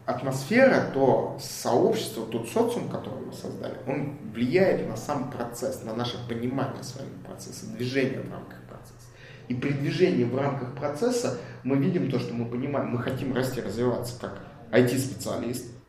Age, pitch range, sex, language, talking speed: 30-49, 120-140 Hz, male, Russian, 150 wpm